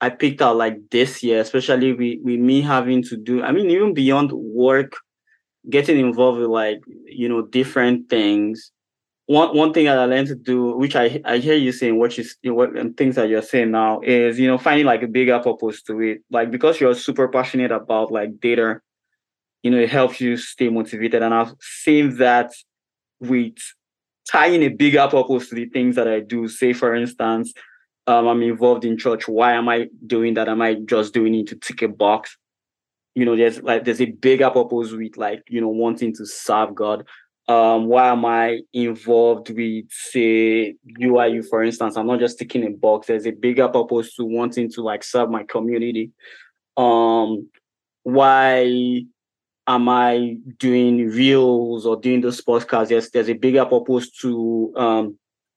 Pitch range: 115-125 Hz